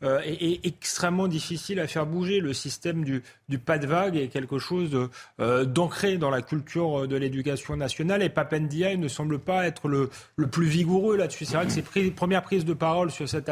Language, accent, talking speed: French, French, 210 wpm